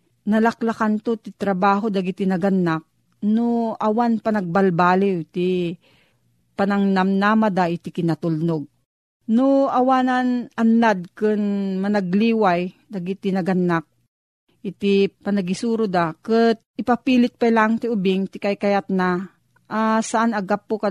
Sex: female